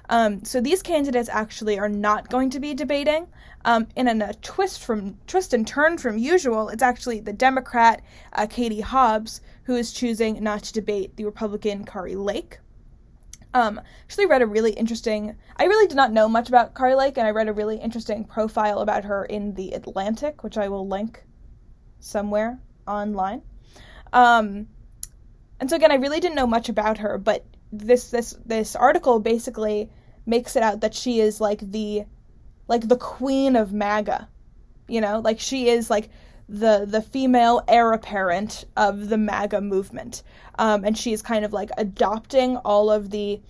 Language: English